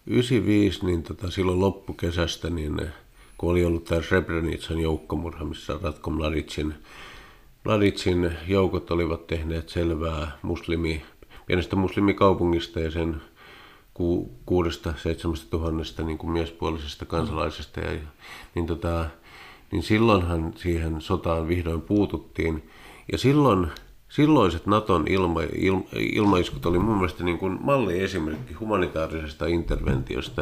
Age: 50-69